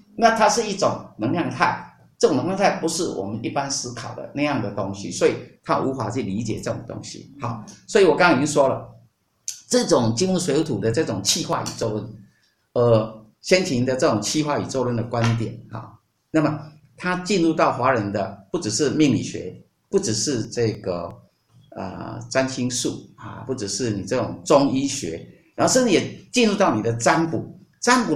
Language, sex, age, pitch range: Chinese, male, 50-69, 115-160 Hz